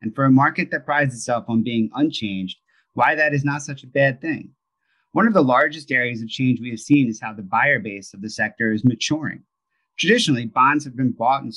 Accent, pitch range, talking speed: American, 115-150 Hz, 230 wpm